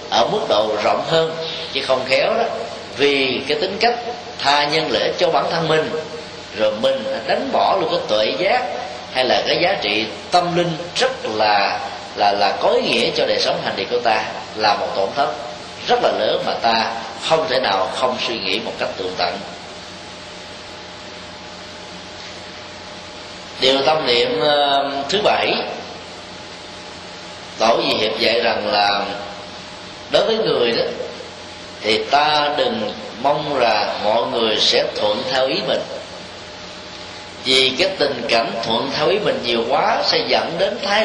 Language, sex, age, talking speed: Vietnamese, male, 20-39, 160 wpm